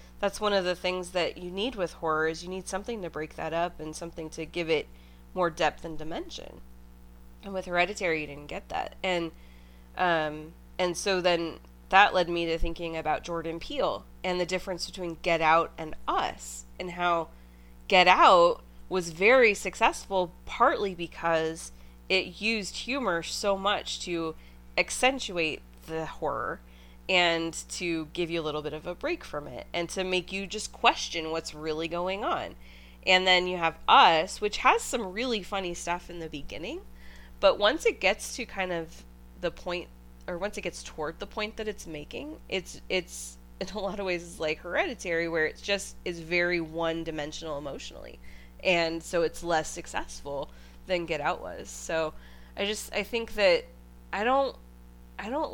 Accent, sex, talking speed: American, female, 175 wpm